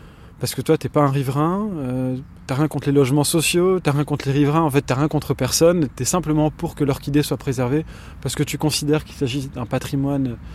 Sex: male